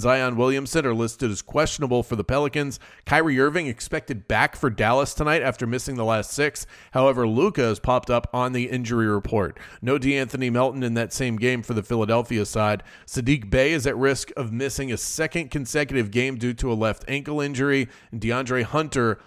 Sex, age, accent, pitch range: male, 30-49, American, 115-140 Hz